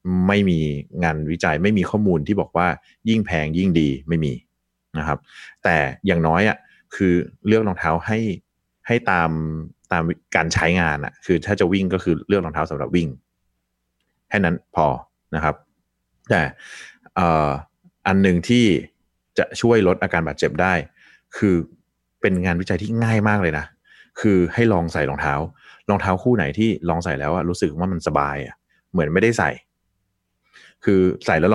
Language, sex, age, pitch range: Thai, male, 30-49, 80-100 Hz